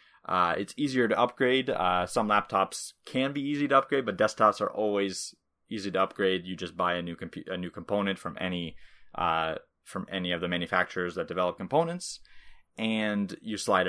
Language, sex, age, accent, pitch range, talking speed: English, male, 20-39, American, 90-115 Hz, 185 wpm